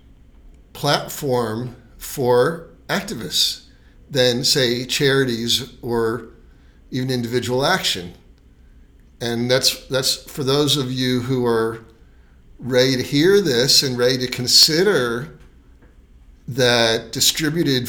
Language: English